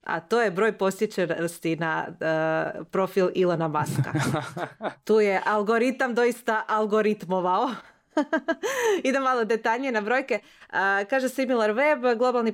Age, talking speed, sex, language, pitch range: 30-49, 110 wpm, female, Croatian, 170-220 Hz